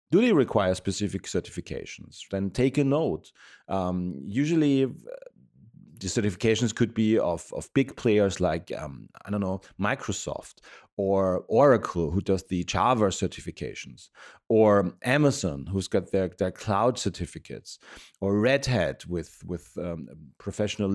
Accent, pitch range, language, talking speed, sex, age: German, 95-130 Hz, English, 135 wpm, male, 40-59